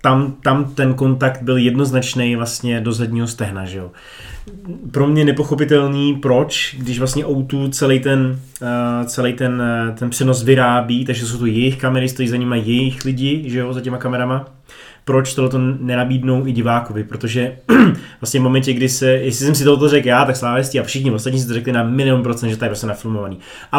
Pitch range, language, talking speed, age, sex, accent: 120-140 Hz, Czech, 190 wpm, 20-39, male, native